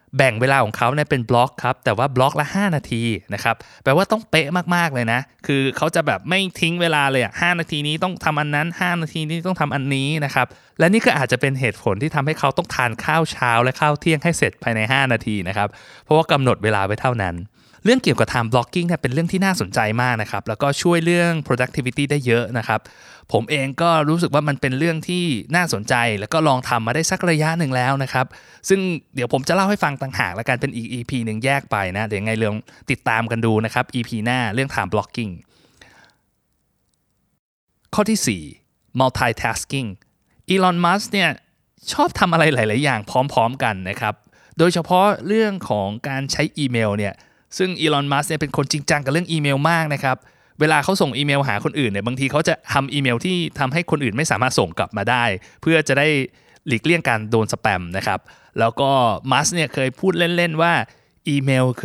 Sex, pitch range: male, 120-160 Hz